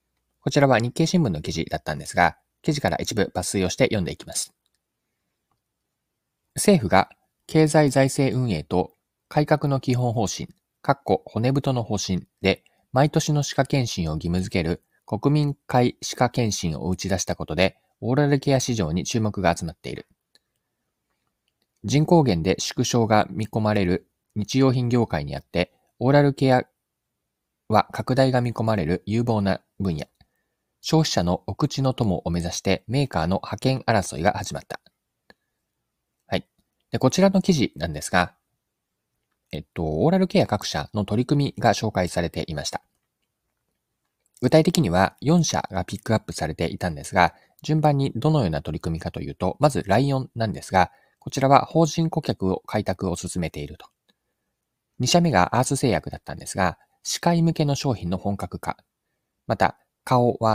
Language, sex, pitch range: Japanese, male, 90-140 Hz